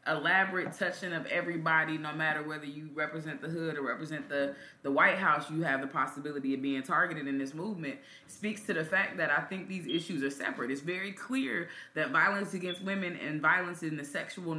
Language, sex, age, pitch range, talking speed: English, female, 20-39, 155-195 Hz, 210 wpm